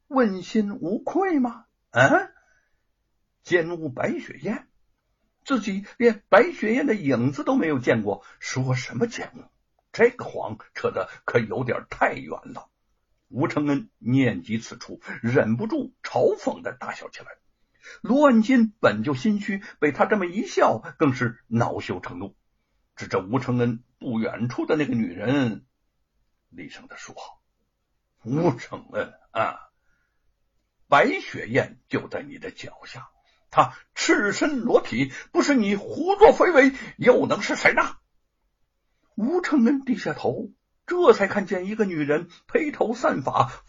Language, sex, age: Chinese, male, 60-79